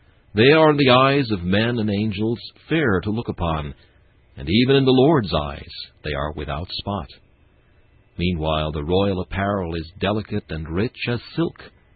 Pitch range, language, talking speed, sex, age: 85-115 Hz, English, 165 wpm, male, 60-79